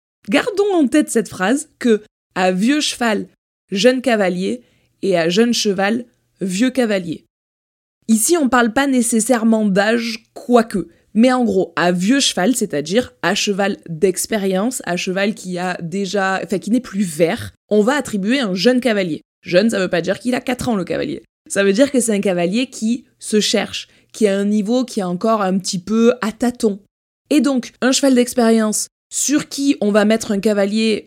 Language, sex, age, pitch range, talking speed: French, female, 20-39, 190-245 Hz, 205 wpm